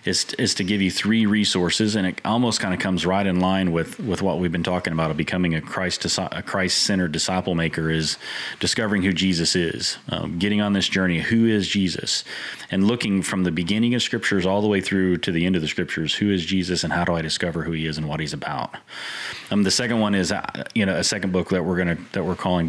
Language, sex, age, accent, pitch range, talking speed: English, male, 30-49, American, 85-105 Hz, 245 wpm